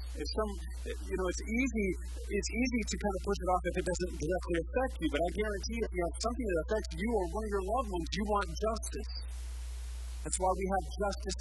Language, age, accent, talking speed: English, 50-69, American, 235 wpm